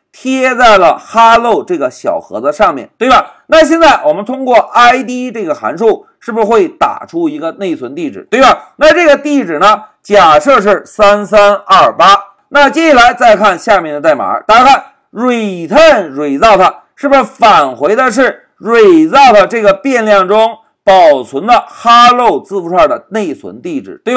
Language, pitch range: Chinese, 215-315 Hz